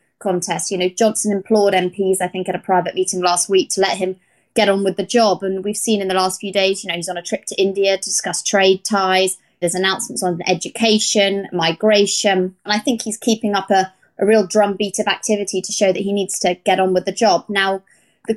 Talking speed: 235 wpm